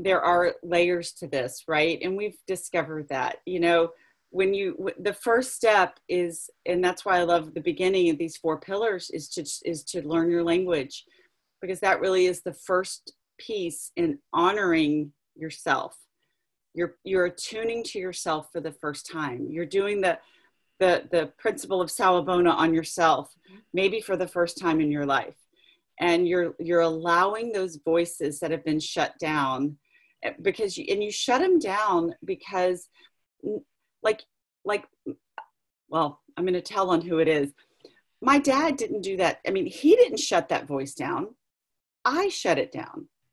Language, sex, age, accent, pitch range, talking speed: English, female, 40-59, American, 170-250 Hz, 170 wpm